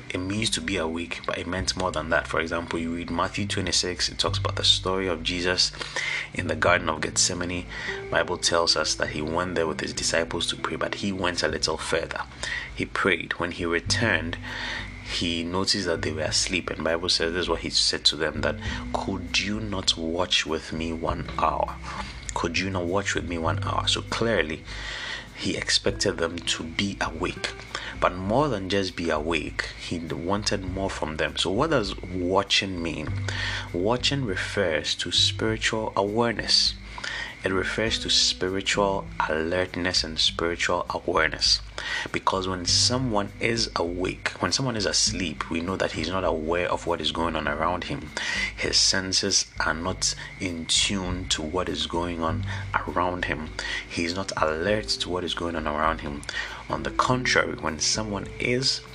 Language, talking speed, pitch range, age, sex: English, 175 wpm, 85-100 Hz, 30-49, male